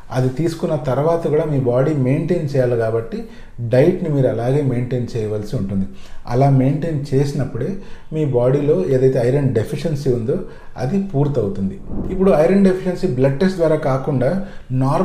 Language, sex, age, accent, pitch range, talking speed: English, male, 40-59, Indian, 125-165 Hz, 130 wpm